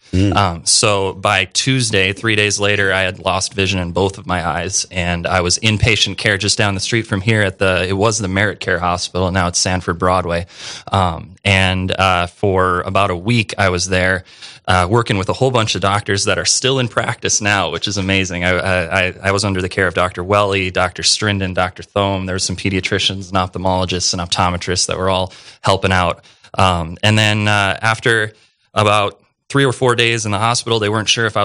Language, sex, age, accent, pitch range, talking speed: English, male, 20-39, American, 90-105 Hz, 215 wpm